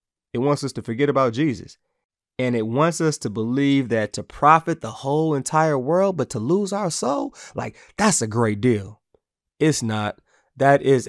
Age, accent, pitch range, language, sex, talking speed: 30-49, American, 115-155 Hz, English, male, 185 wpm